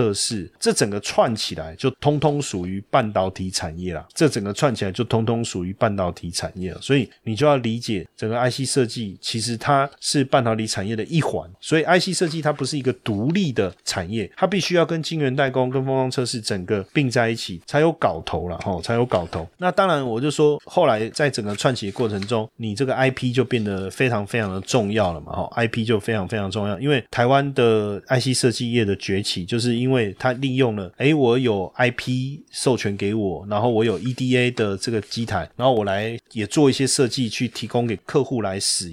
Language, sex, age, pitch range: Chinese, male, 30-49, 100-130 Hz